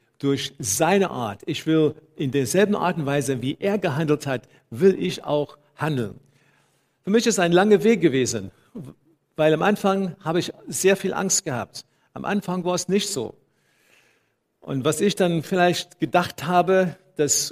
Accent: German